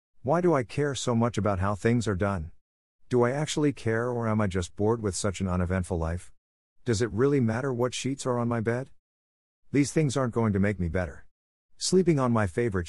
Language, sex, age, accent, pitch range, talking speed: English, male, 50-69, American, 90-120 Hz, 220 wpm